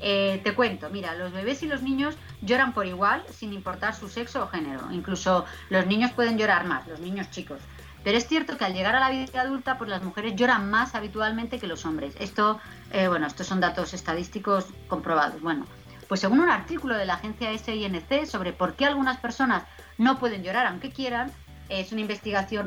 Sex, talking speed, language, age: female, 200 wpm, Spanish, 30-49